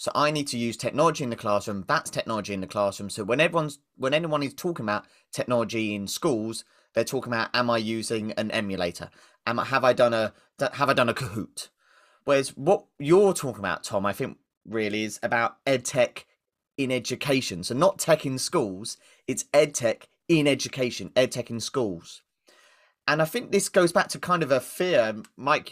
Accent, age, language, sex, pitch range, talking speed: British, 30-49, English, male, 115-155 Hz, 200 wpm